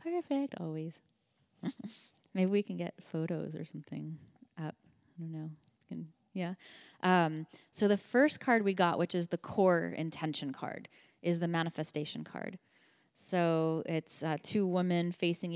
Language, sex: English, female